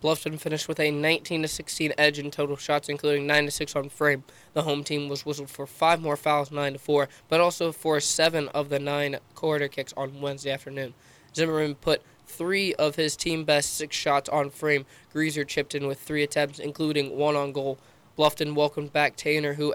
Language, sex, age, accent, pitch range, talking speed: English, male, 20-39, American, 140-150 Hz, 180 wpm